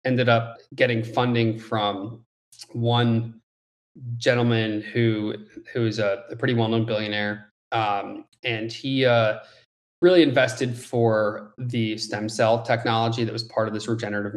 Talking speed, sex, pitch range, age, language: 140 wpm, male, 110-125 Hz, 20-39, English